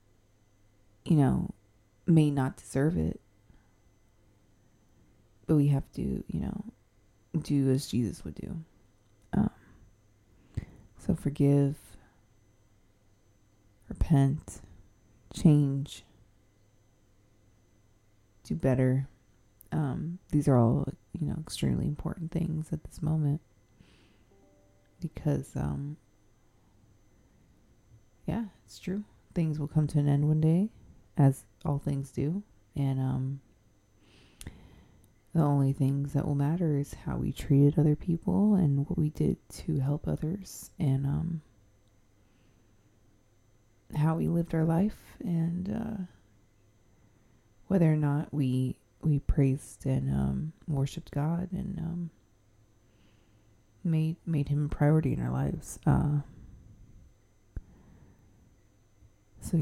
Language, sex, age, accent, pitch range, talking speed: English, female, 30-49, American, 105-150 Hz, 105 wpm